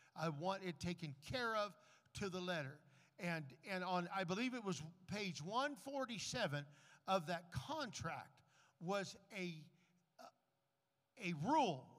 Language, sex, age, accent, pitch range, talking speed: English, male, 50-69, American, 165-230 Hz, 125 wpm